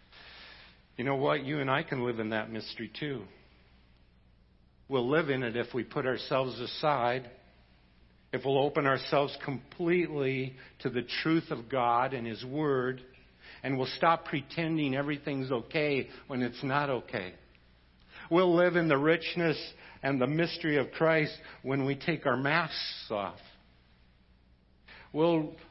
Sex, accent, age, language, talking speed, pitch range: male, American, 60-79, English, 140 wpm, 120-165 Hz